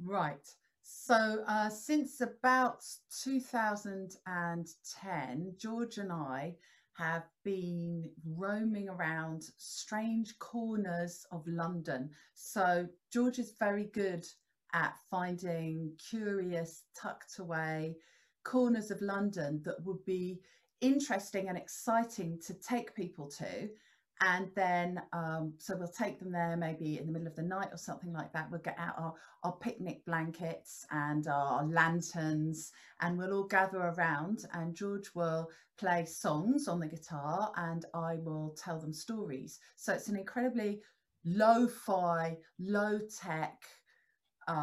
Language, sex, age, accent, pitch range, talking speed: English, female, 40-59, British, 160-200 Hz, 125 wpm